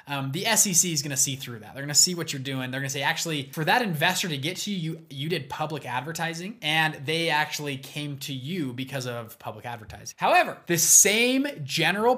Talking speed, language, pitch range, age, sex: 230 wpm, English, 135-175 Hz, 20-39, male